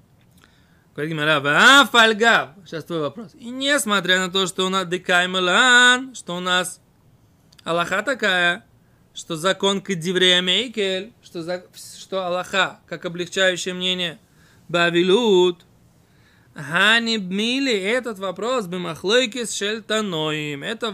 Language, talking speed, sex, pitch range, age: Russian, 95 wpm, male, 170-215 Hz, 20-39